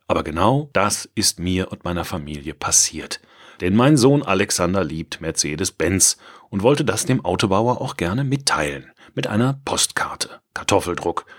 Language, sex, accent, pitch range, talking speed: German, male, German, 90-120 Hz, 140 wpm